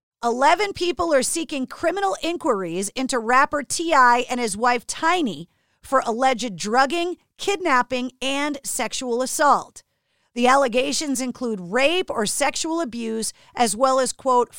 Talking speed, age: 130 wpm, 40-59